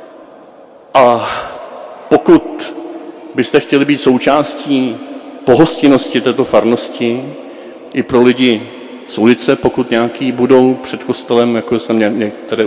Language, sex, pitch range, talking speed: Czech, male, 105-125 Hz, 105 wpm